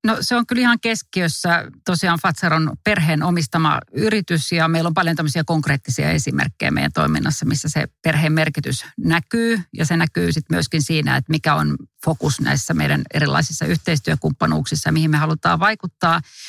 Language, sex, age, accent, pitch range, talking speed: Finnish, female, 40-59, native, 145-180 Hz, 155 wpm